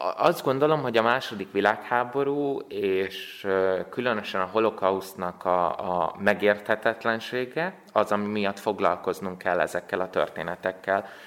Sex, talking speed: male, 110 wpm